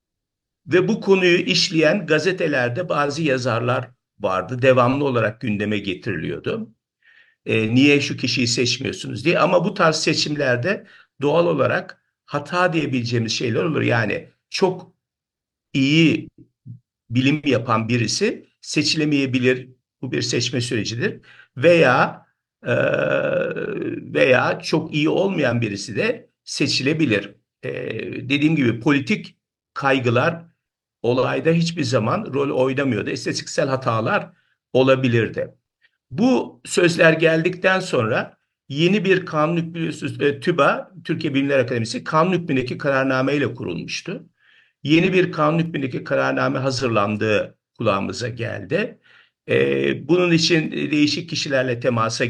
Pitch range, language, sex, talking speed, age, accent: 120-160 Hz, Turkish, male, 105 wpm, 50-69, native